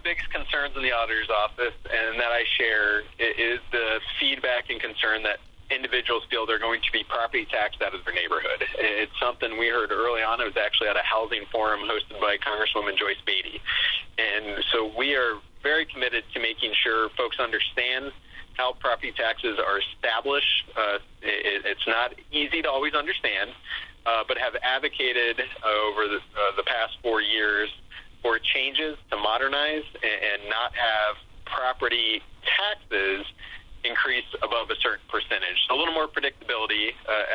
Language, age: English, 30-49